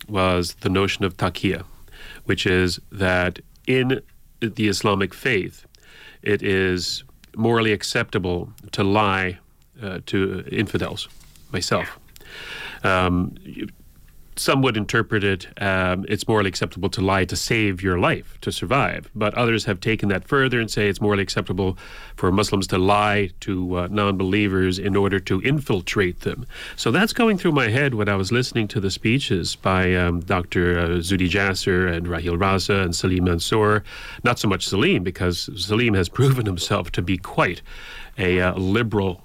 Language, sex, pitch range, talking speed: English, male, 95-115 Hz, 155 wpm